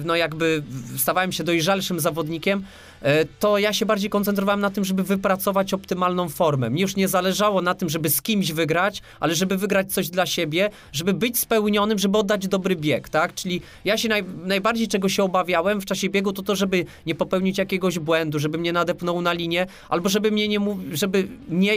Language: Polish